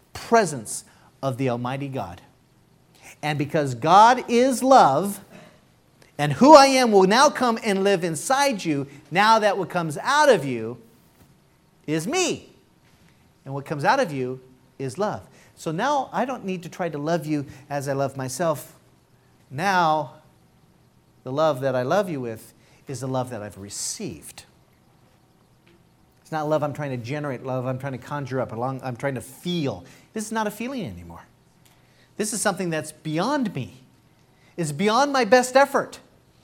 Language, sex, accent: English, male, American